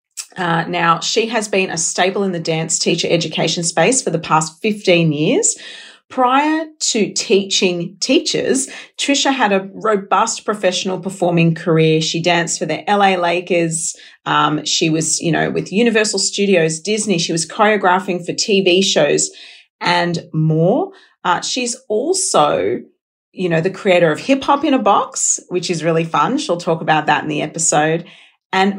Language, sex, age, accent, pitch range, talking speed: English, female, 40-59, Australian, 165-210 Hz, 160 wpm